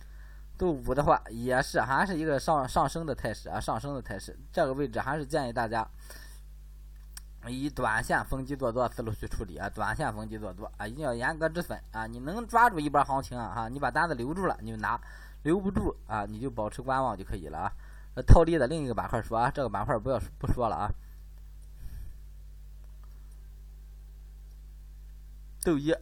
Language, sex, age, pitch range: Chinese, male, 20-39, 95-140 Hz